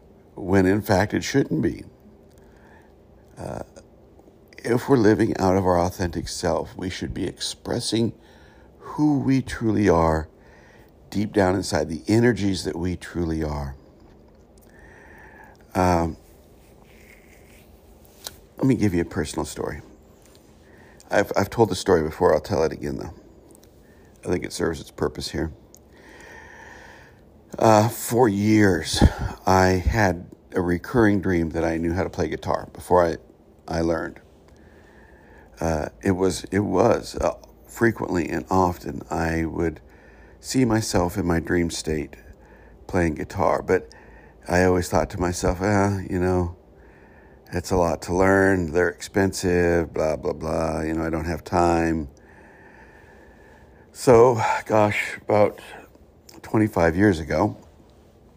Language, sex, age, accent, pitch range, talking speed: English, male, 60-79, American, 80-100 Hz, 130 wpm